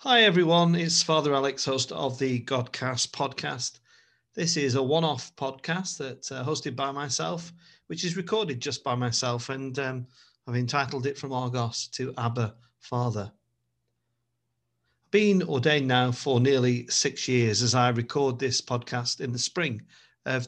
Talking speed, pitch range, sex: 150 wpm, 120-140 Hz, male